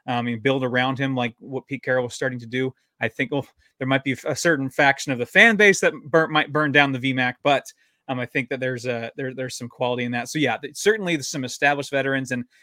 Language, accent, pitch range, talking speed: English, American, 125-145 Hz, 255 wpm